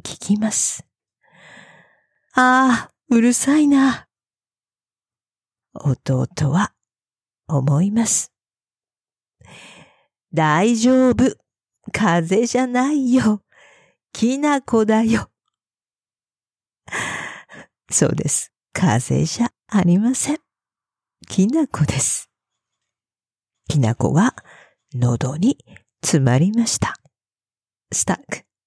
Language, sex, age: English, female, 50-69